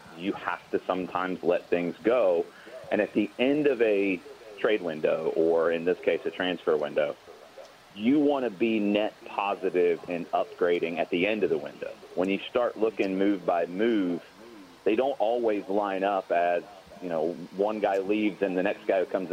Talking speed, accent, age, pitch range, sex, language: 185 wpm, American, 30-49, 90-135 Hz, male, English